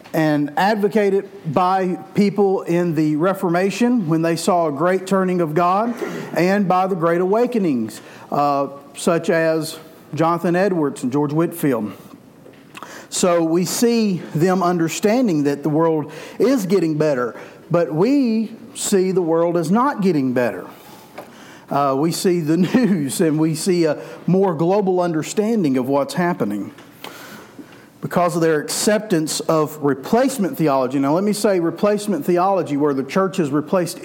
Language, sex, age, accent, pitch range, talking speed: English, male, 50-69, American, 155-195 Hz, 145 wpm